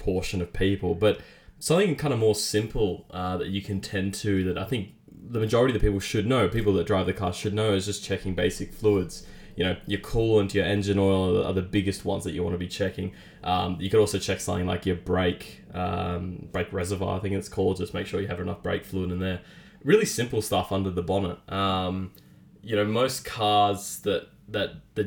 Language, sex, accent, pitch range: English, male, Australian, 90-105 Hz